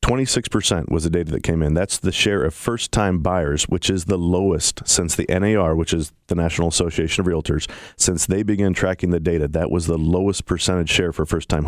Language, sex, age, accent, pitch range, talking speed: English, male, 40-59, American, 85-105 Hz, 210 wpm